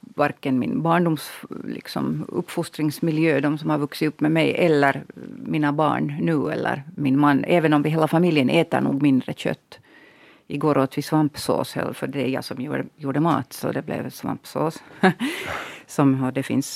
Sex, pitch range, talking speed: female, 140-170 Hz, 165 wpm